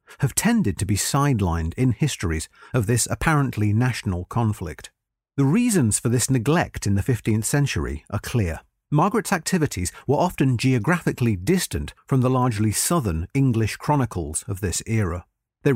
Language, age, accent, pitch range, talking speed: English, 40-59, British, 100-145 Hz, 150 wpm